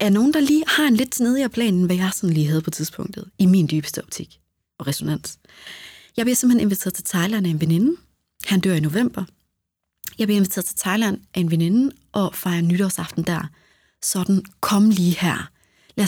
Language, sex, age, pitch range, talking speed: Danish, female, 30-49, 175-240 Hz, 190 wpm